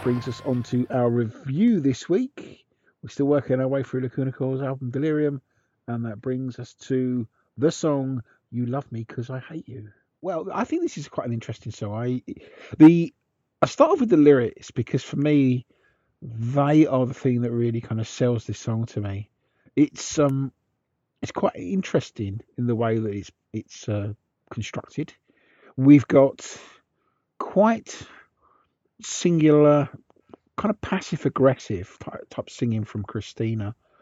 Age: 50-69